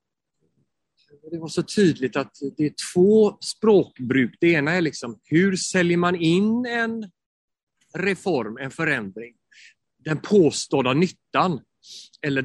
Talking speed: 120 wpm